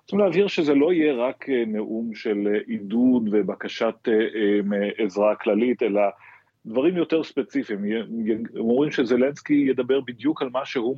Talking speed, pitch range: 135 wpm, 105-125 Hz